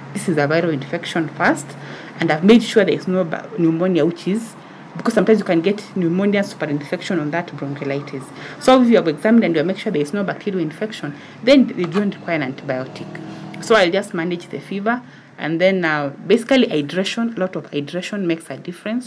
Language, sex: English, female